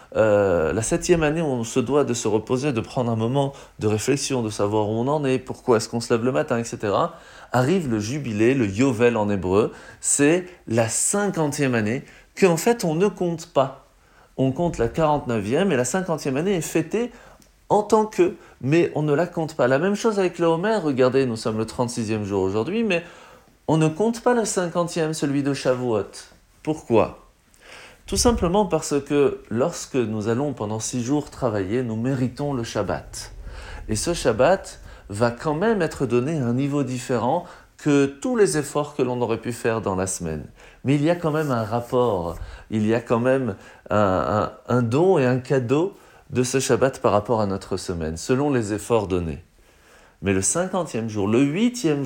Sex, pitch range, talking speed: male, 115-155 Hz, 195 wpm